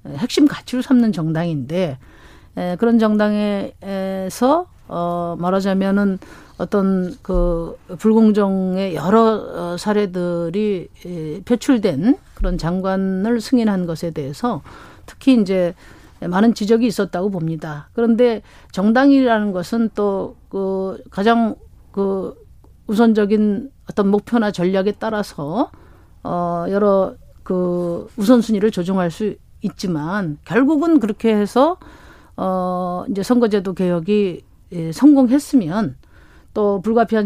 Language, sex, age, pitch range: Korean, female, 40-59, 180-220 Hz